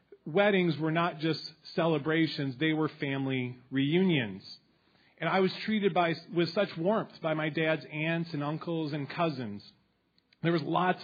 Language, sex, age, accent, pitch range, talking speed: English, male, 40-59, American, 150-185 Hz, 145 wpm